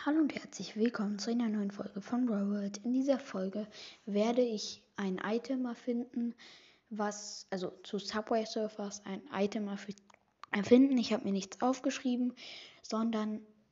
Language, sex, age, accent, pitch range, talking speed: German, female, 20-39, German, 195-230 Hz, 150 wpm